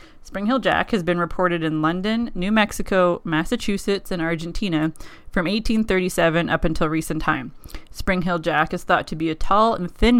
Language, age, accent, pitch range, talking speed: English, 20-39, American, 170-205 Hz, 165 wpm